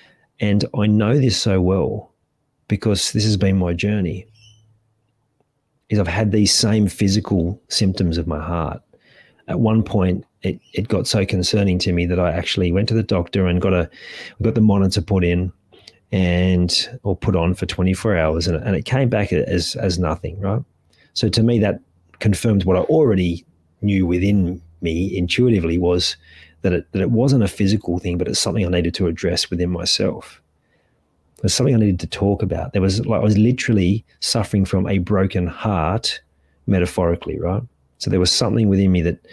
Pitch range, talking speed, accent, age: 90-110 Hz, 185 wpm, Australian, 30-49